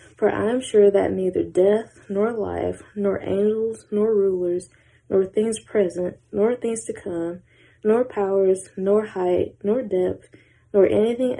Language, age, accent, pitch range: English, 20-39, American, 180-215 Hz